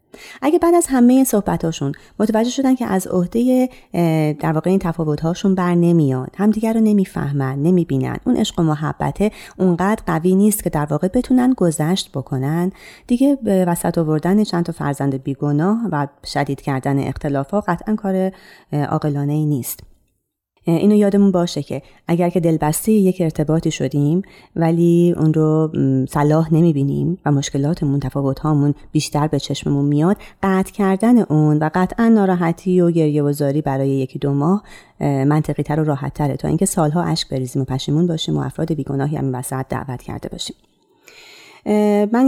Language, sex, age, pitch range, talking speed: Persian, female, 30-49, 145-200 Hz, 155 wpm